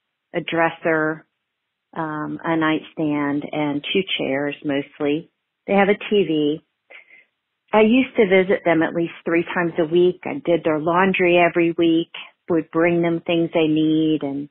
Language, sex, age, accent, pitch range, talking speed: English, female, 40-59, American, 150-170 Hz, 155 wpm